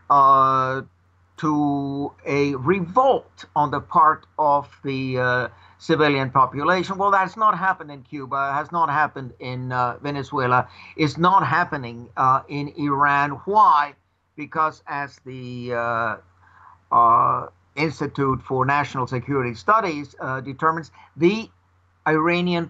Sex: male